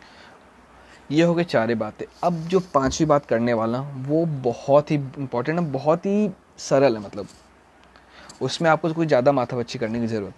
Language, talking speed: Hindi, 170 wpm